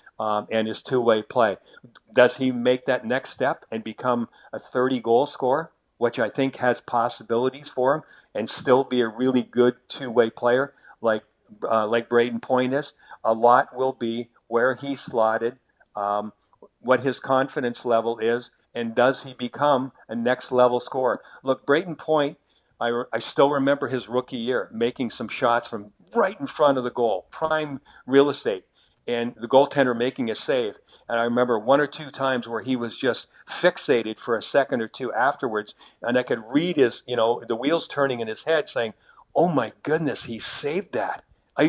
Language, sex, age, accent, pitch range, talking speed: English, male, 50-69, American, 115-140 Hz, 180 wpm